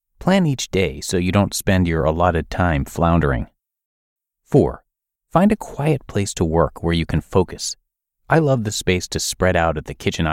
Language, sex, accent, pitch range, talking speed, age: English, male, American, 80-120 Hz, 185 wpm, 30-49